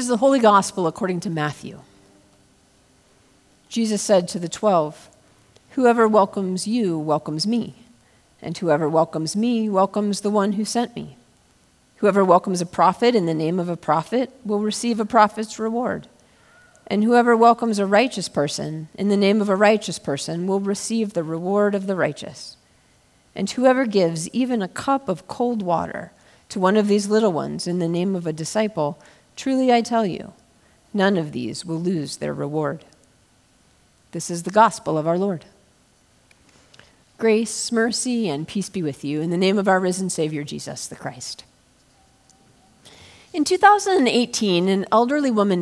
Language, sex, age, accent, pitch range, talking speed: English, female, 40-59, American, 170-220 Hz, 160 wpm